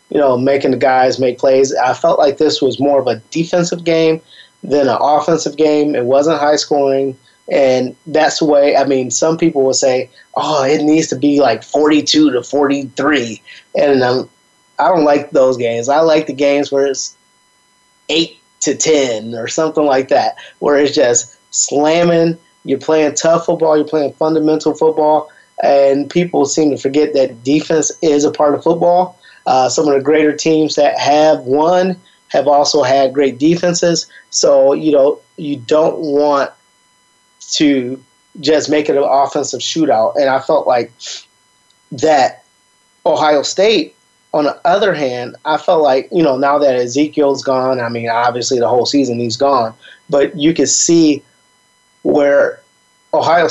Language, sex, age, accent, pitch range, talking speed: English, male, 20-39, American, 135-155 Hz, 165 wpm